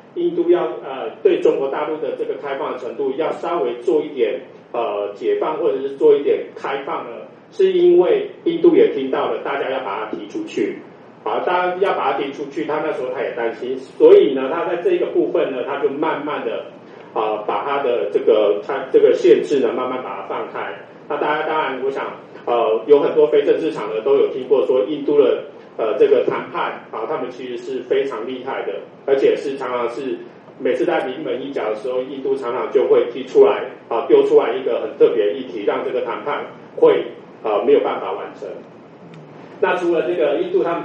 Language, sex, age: Chinese, male, 40-59